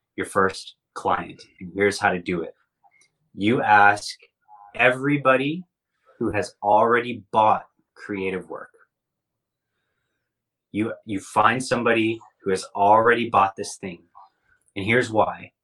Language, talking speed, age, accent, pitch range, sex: English, 120 wpm, 30-49, American, 95-120 Hz, male